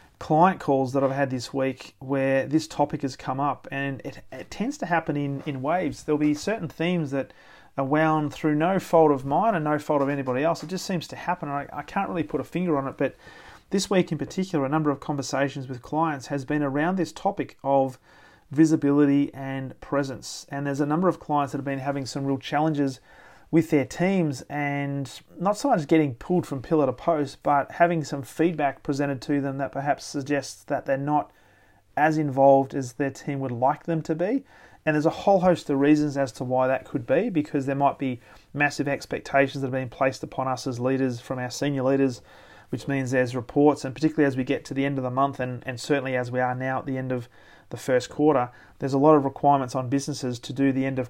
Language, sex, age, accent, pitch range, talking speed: English, male, 30-49, Australian, 135-155 Hz, 230 wpm